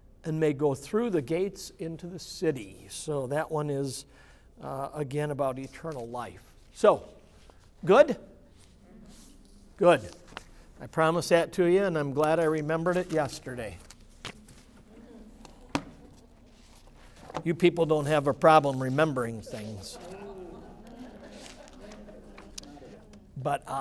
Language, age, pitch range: English, 50-69, 145-185 Hz